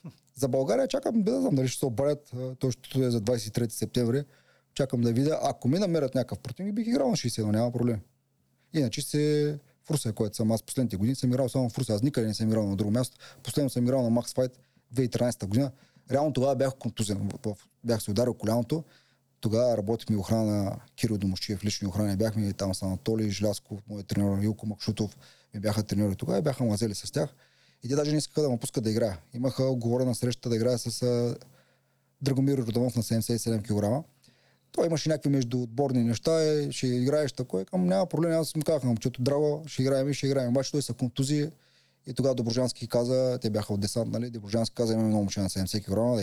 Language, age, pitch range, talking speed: Bulgarian, 30-49, 110-135 Hz, 205 wpm